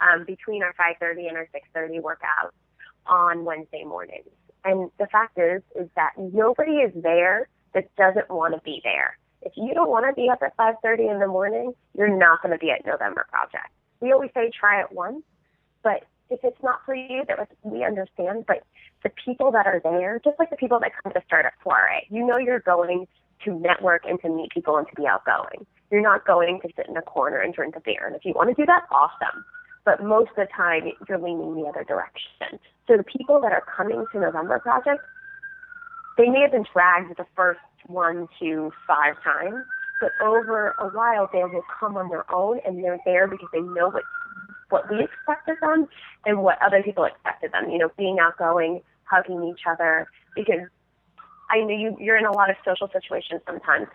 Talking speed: 210 wpm